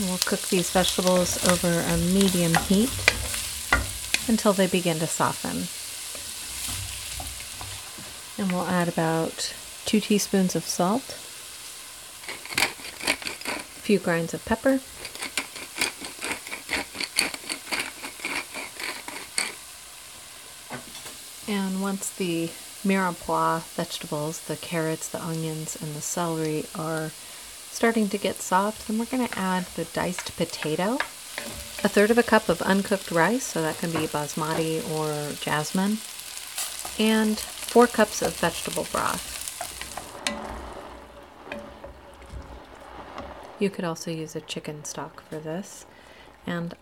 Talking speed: 105 wpm